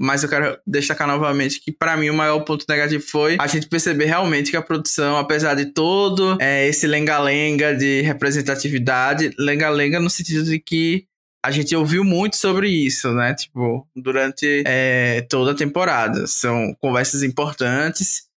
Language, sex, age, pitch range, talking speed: Portuguese, male, 20-39, 145-180 Hz, 160 wpm